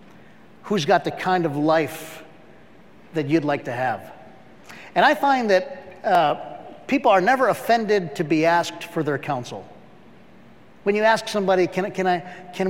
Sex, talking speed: male, 160 wpm